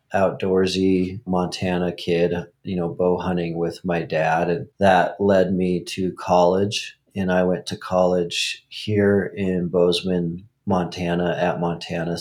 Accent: American